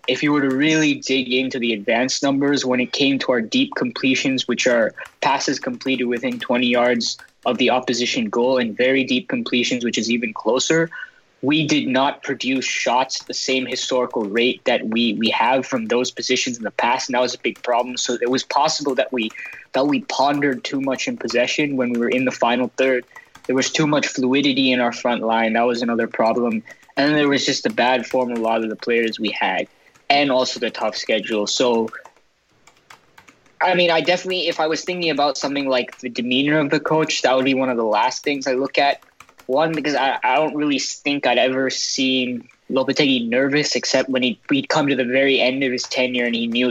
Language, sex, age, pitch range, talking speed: English, male, 20-39, 120-145 Hz, 220 wpm